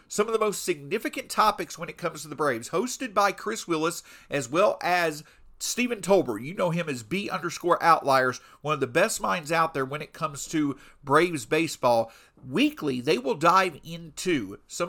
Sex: male